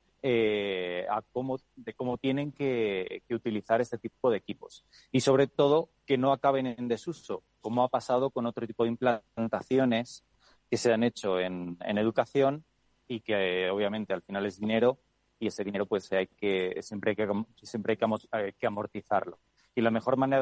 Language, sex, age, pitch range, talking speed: Spanish, male, 30-49, 110-135 Hz, 175 wpm